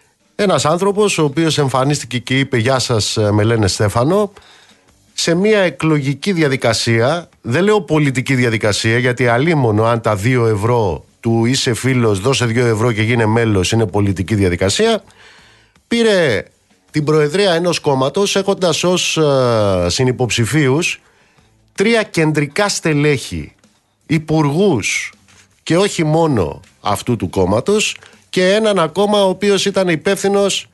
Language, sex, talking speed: Greek, male, 125 wpm